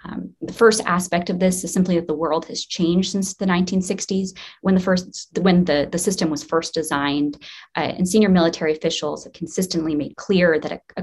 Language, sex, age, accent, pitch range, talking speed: English, female, 20-39, American, 160-190 Hz, 205 wpm